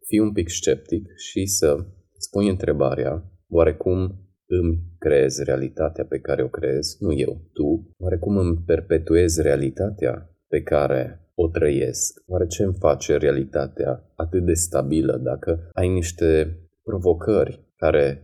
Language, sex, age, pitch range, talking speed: Romanian, male, 20-39, 80-95 Hz, 130 wpm